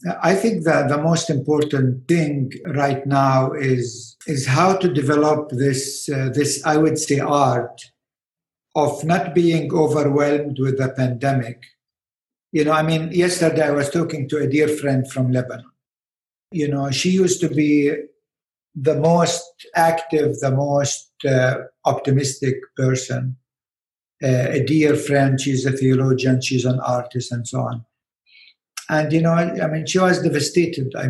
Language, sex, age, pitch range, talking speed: English, male, 60-79, 130-155 Hz, 150 wpm